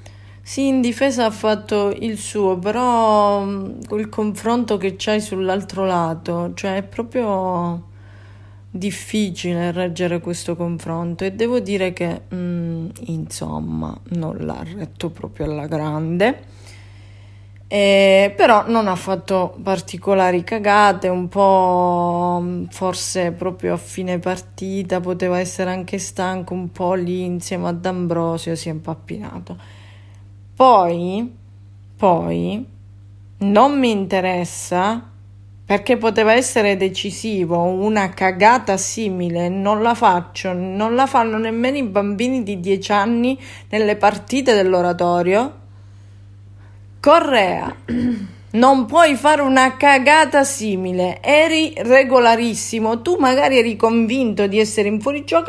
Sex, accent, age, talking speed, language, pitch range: female, native, 20-39, 115 wpm, Italian, 170-220 Hz